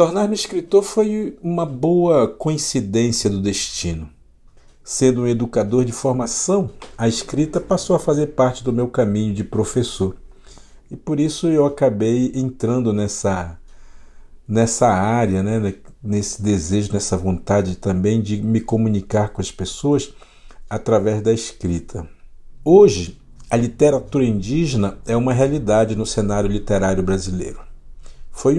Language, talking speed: Portuguese, 125 wpm